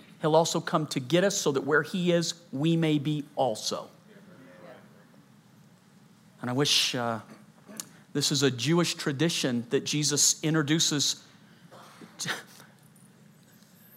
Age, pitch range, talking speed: 40-59, 160-200 Hz, 115 wpm